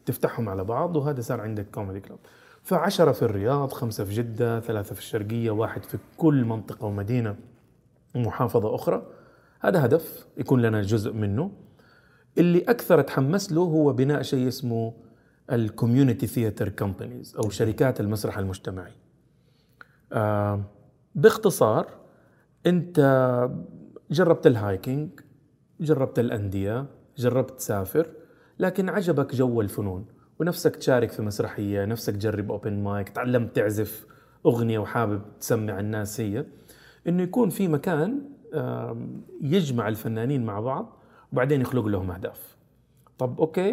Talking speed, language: 115 wpm, Arabic